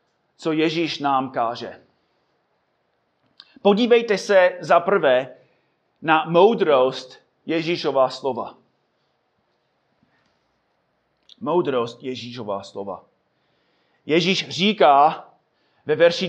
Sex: male